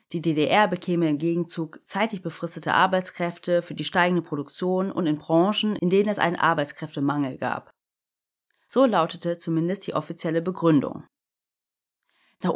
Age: 30-49